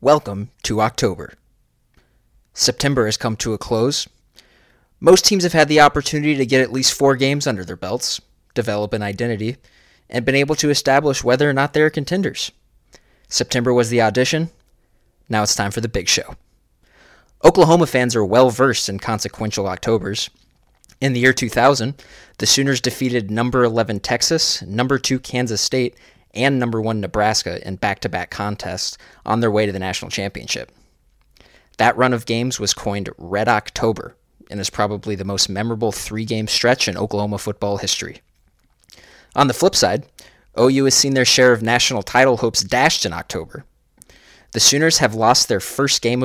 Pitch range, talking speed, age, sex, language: 105-130 Hz, 165 wpm, 20-39, male, English